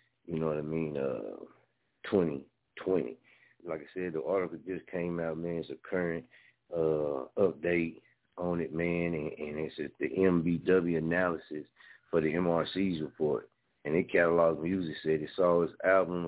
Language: English